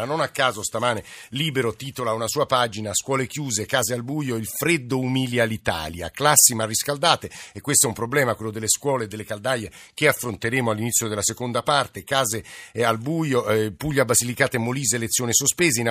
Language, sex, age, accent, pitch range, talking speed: Italian, male, 50-69, native, 110-135 Hz, 180 wpm